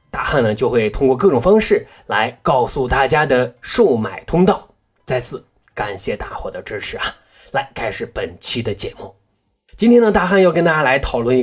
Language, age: Chinese, 20-39